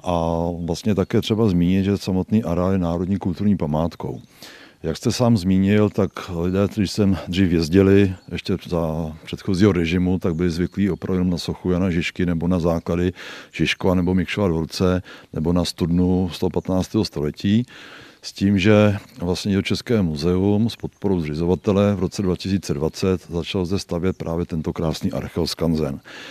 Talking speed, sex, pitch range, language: 150 wpm, male, 85-100 Hz, Czech